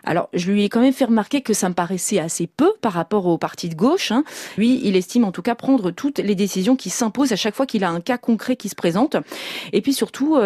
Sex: female